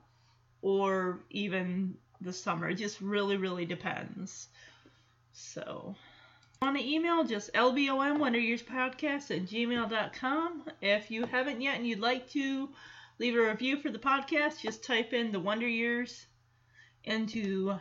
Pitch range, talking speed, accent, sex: 190-245 Hz, 140 wpm, American, female